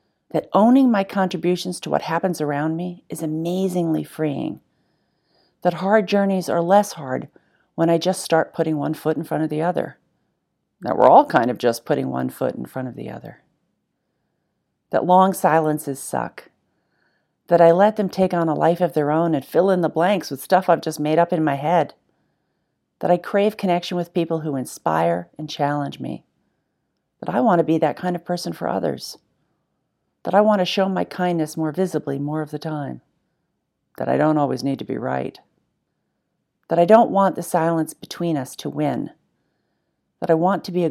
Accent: American